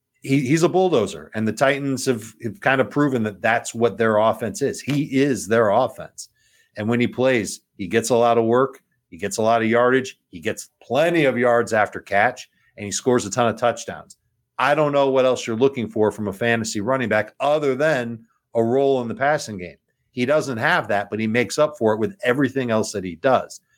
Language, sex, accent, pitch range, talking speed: English, male, American, 115-150 Hz, 220 wpm